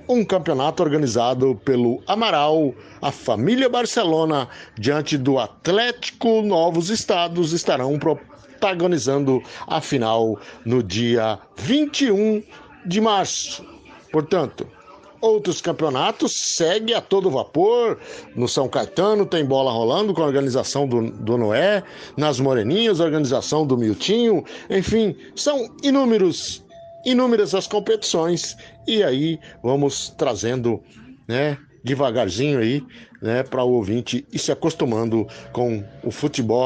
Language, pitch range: Portuguese, 125-190 Hz